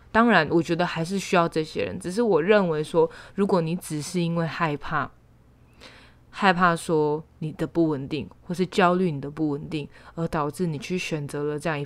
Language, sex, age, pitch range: Chinese, female, 20-39, 150-175 Hz